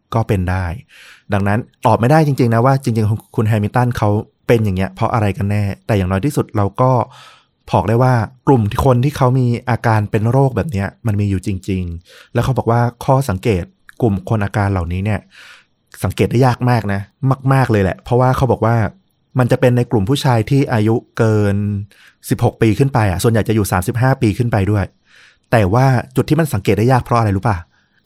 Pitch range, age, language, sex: 100-125 Hz, 20-39, Thai, male